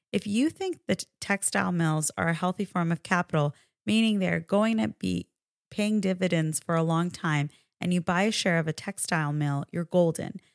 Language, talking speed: English, 195 wpm